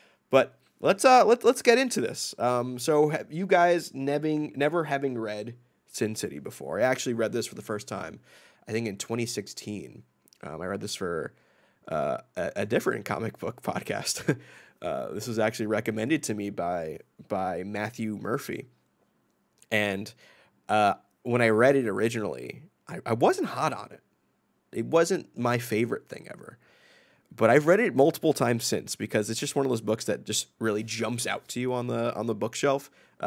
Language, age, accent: English, 20-39, American